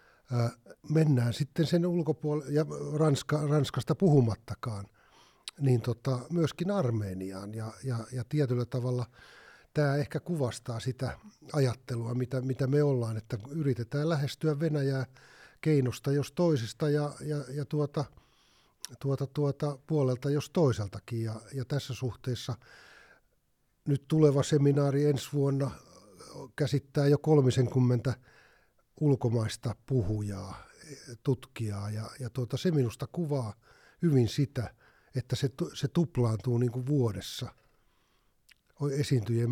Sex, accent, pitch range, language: male, native, 115-145 Hz, Finnish